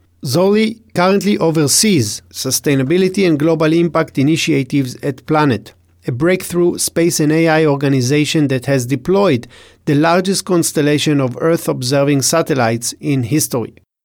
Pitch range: 135-175 Hz